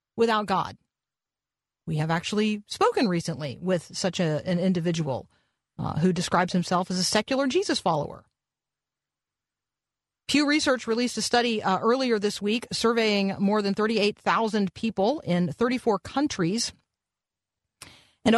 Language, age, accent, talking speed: English, 40-59, American, 125 wpm